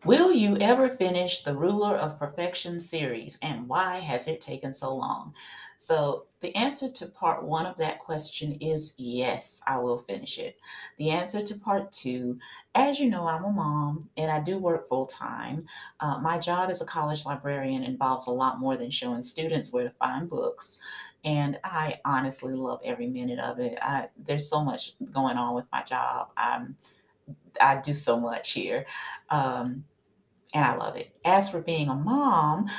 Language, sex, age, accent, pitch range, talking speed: English, female, 30-49, American, 150-245 Hz, 180 wpm